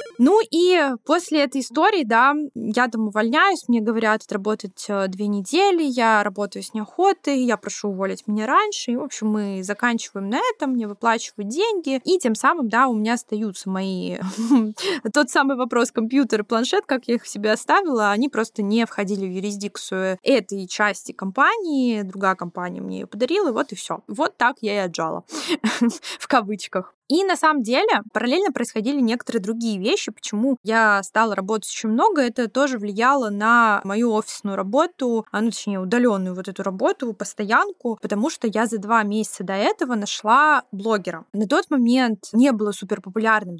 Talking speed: 170 wpm